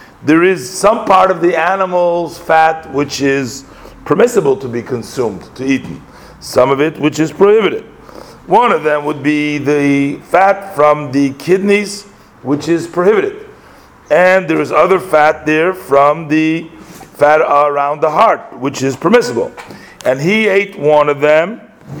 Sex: male